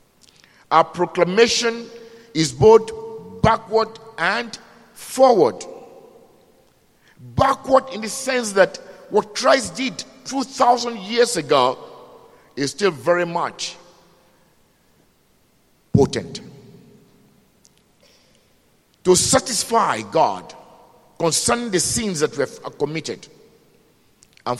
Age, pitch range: 50-69, 135-225 Hz